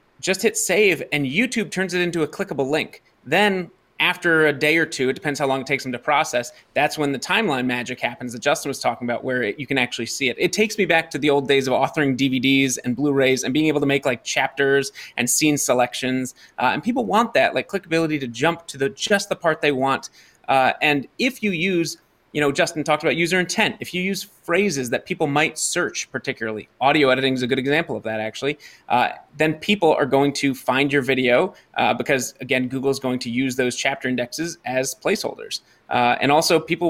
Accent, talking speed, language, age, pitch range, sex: American, 225 wpm, English, 30-49, 135-175 Hz, male